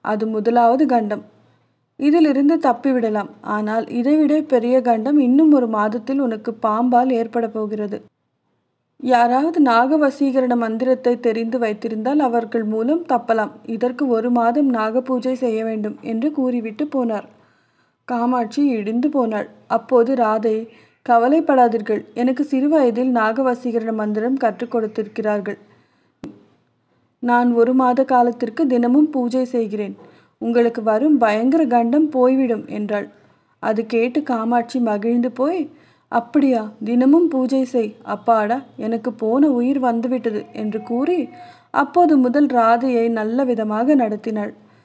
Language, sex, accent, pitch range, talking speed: Tamil, female, native, 225-260 Hz, 110 wpm